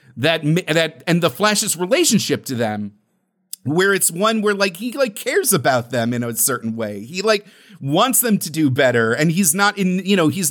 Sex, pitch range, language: male, 140-200 Hz, English